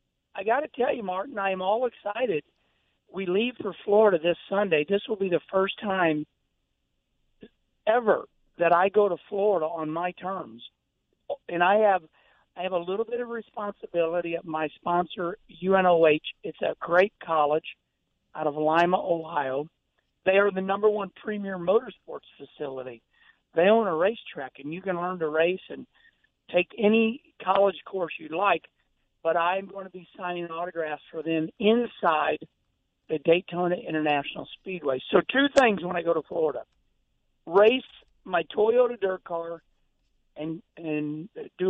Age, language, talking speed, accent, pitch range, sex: 60-79, English, 155 wpm, American, 155-205 Hz, male